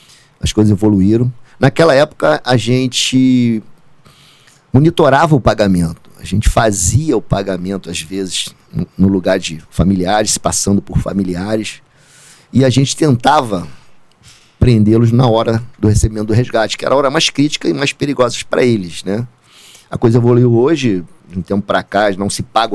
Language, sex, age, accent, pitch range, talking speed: Portuguese, male, 50-69, Brazilian, 100-125 Hz, 155 wpm